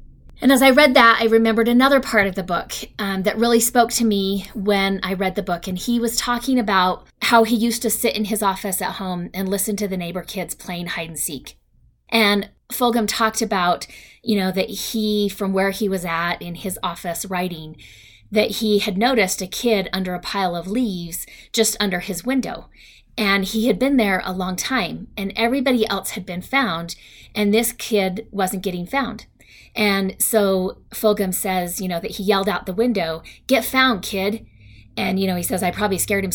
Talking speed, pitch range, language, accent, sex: 205 wpm, 180-225 Hz, English, American, female